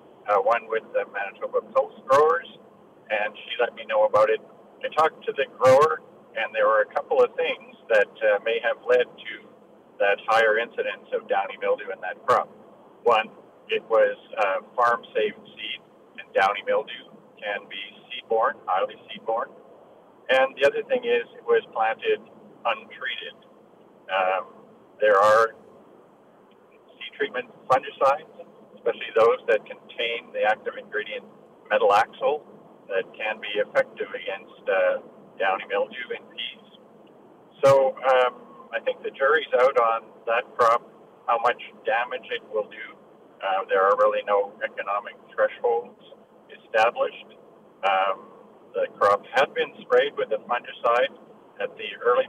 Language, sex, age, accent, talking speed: English, male, 50-69, American, 145 wpm